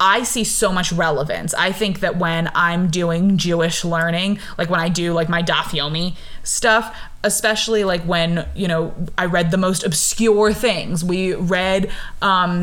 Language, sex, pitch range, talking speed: English, female, 180-215 Hz, 160 wpm